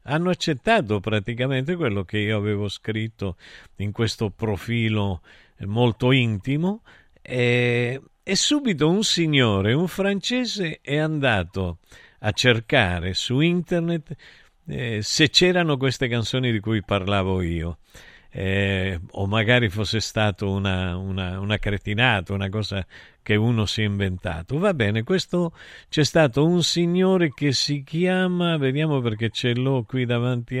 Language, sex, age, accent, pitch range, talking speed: Italian, male, 50-69, native, 105-155 Hz, 130 wpm